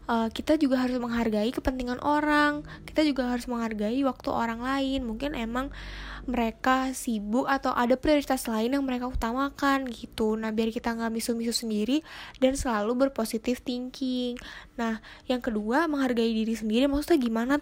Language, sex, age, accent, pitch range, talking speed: English, female, 10-29, Indonesian, 235-275 Hz, 150 wpm